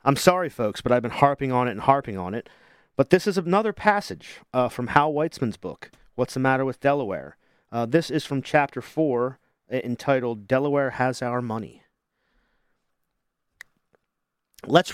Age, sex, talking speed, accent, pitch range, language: 40-59, male, 160 wpm, American, 120-160 Hz, English